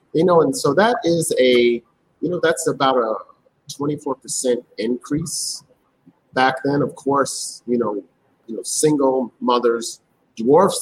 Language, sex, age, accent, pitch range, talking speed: English, male, 40-59, American, 115-145 Hz, 135 wpm